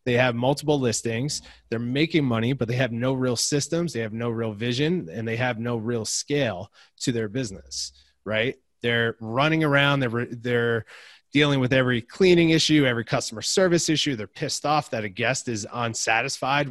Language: English